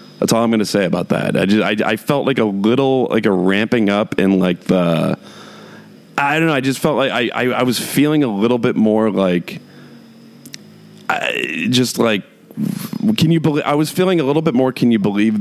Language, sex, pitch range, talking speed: English, male, 100-145 Hz, 215 wpm